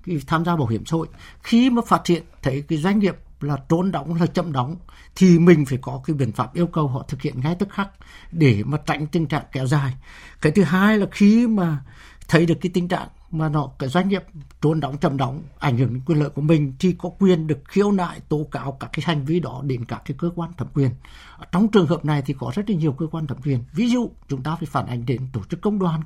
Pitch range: 145-180 Hz